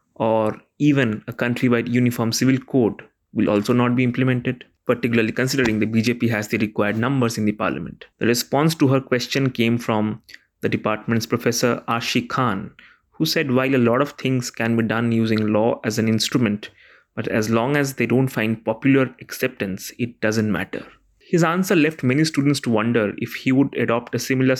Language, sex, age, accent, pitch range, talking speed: English, male, 20-39, Indian, 110-130 Hz, 185 wpm